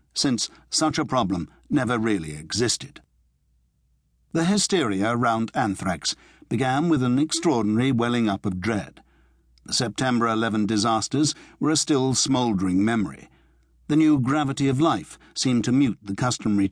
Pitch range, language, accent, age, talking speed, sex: 100-130 Hz, English, British, 60-79, 135 wpm, male